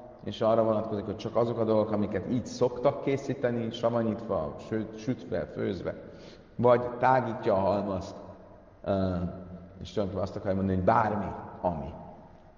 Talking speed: 125 wpm